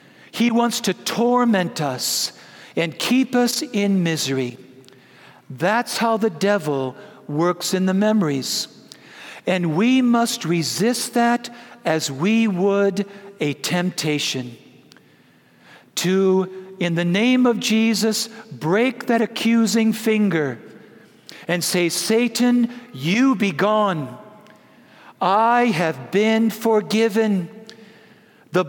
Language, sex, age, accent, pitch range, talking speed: English, male, 60-79, American, 170-230 Hz, 105 wpm